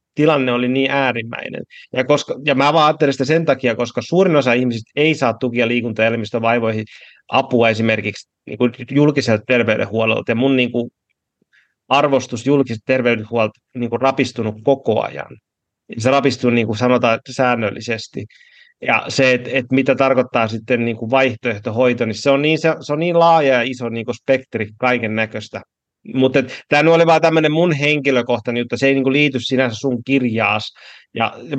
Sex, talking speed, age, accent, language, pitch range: male, 160 wpm, 30-49, native, Finnish, 115-135 Hz